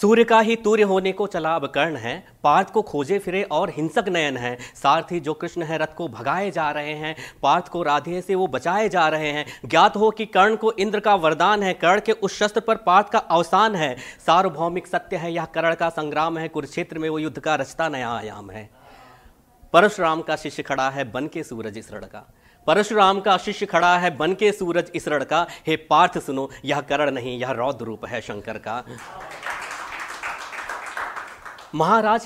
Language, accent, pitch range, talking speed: Hindi, native, 145-195 Hz, 195 wpm